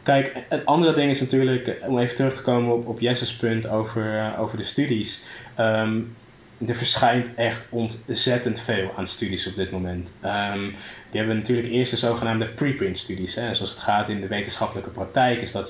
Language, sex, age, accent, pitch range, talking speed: Dutch, male, 20-39, Dutch, 110-125 Hz, 190 wpm